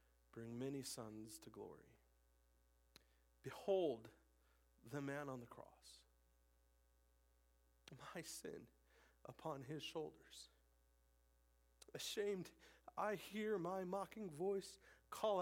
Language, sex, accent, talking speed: English, male, American, 90 wpm